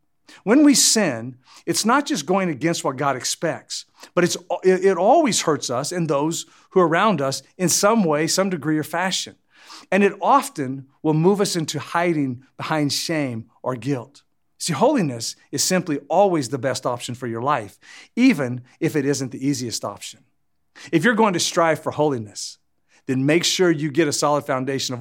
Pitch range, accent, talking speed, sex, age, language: 130-185 Hz, American, 180 wpm, male, 50-69, English